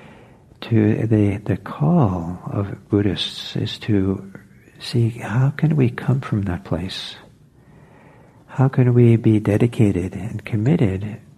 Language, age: English, 60-79